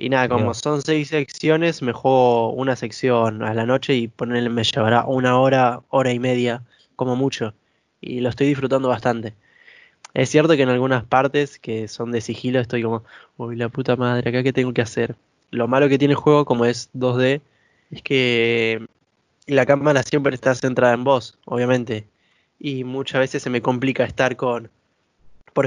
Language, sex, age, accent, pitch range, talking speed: Spanish, male, 20-39, Argentinian, 115-140 Hz, 180 wpm